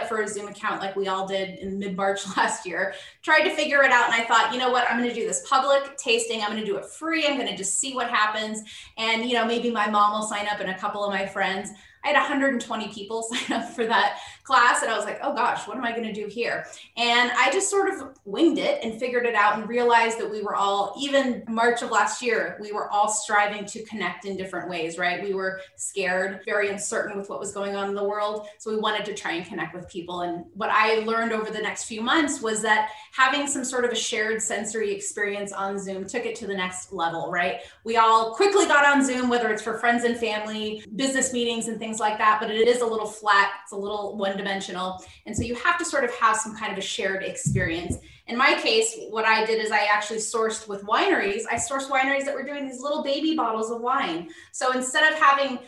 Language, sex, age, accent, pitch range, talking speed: English, female, 20-39, American, 205-250 Hz, 250 wpm